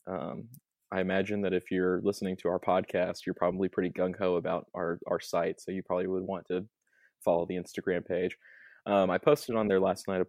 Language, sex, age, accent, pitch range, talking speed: English, male, 20-39, American, 90-105 Hz, 210 wpm